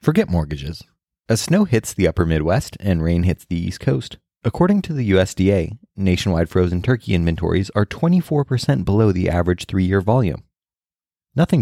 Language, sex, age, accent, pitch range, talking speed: English, male, 30-49, American, 85-115 Hz, 155 wpm